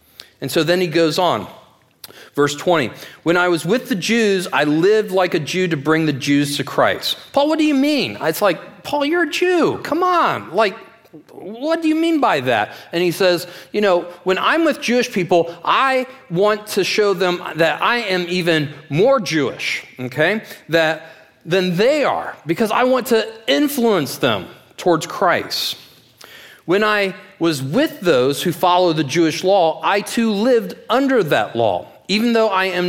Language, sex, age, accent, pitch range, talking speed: English, male, 40-59, American, 165-235 Hz, 180 wpm